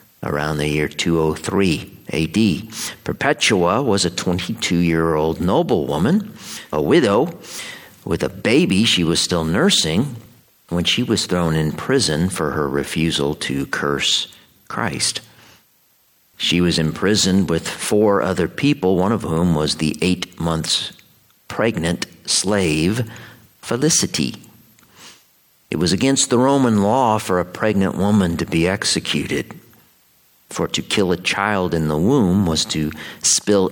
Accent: American